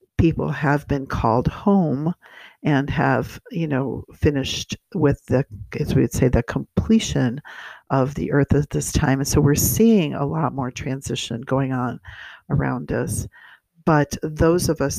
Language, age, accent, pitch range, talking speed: English, 50-69, American, 135-155 Hz, 160 wpm